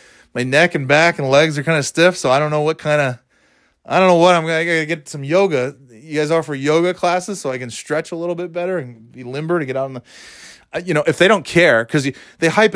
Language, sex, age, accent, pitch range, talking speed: English, male, 30-49, American, 120-165 Hz, 260 wpm